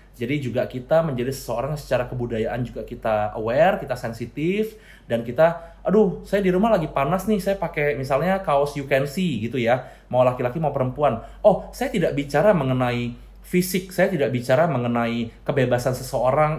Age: 20-39